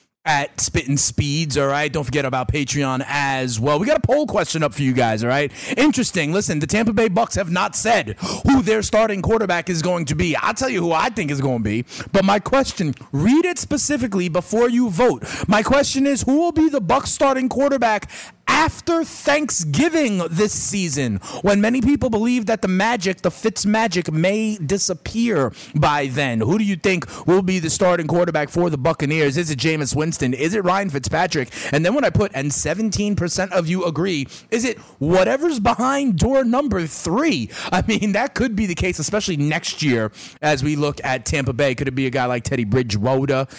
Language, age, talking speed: English, 30-49, 200 wpm